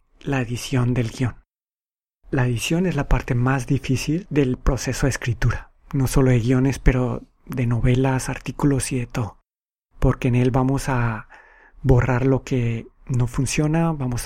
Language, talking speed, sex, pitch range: Spanish, 155 wpm, male, 125-145 Hz